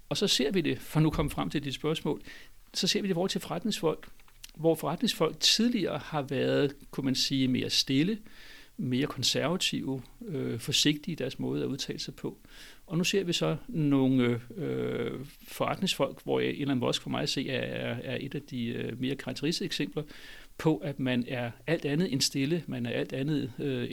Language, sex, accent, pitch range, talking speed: Danish, male, native, 125-155 Hz, 185 wpm